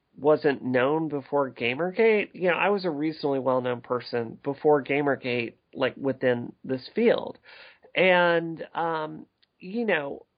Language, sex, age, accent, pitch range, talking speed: English, male, 40-59, American, 135-175 Hz, 125 wpm